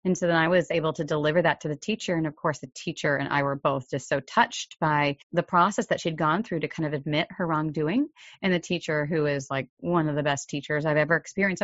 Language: English